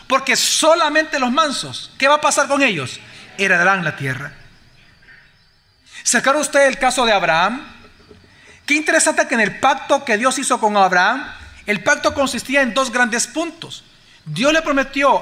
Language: Spanish